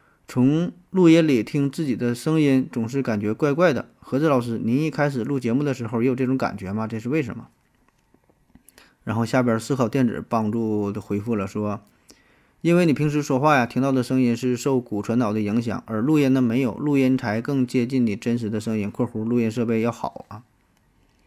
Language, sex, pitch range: Chinese, male, 110-135 Hz